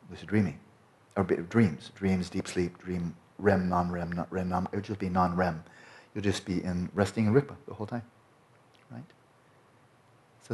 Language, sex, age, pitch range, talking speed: English, male, 40-59, 90-110 Hz, 175 wpm